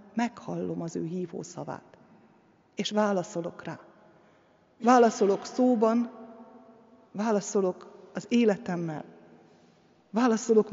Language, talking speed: Hungarian, 80 wpm